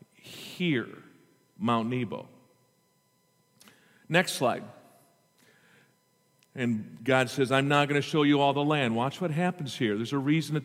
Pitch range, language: 130-165 Hz, English